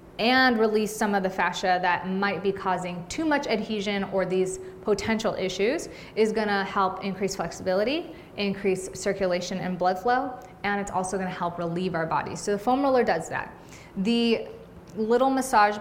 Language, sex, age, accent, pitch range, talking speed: English, female, 20-39, American, 180-215 Hz, 165 wpm